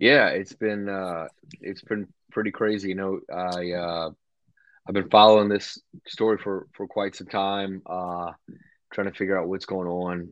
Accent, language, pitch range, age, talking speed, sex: American, English, 85-95 Hz, 30-49, 175 wpm, male